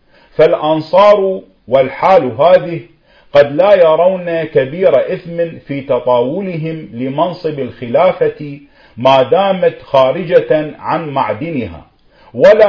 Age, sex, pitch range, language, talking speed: 50-69, male, 130-175 Hz, Arabic, 85 wpm